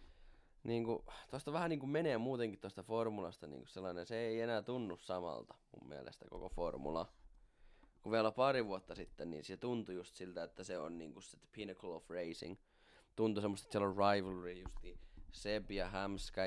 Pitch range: 95-115 Hz